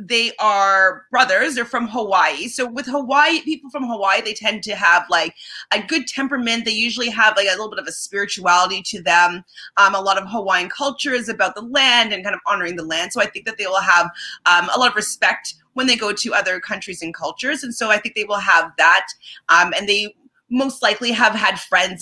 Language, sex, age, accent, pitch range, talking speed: English, female, 30-49, American, 175-245 Hz, 230 wpm